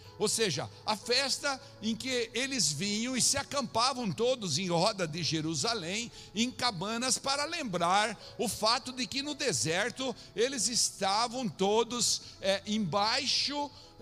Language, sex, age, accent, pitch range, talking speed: Portuguese, male, 60-79, Brazilian, 175-235 Hz, 130 wpm